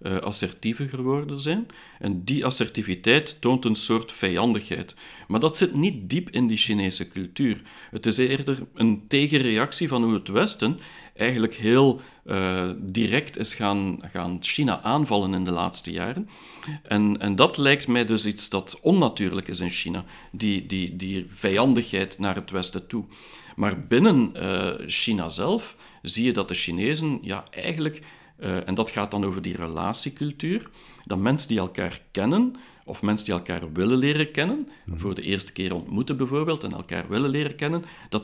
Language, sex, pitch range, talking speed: Dutch, male, 95-140 Hz, 165 wpm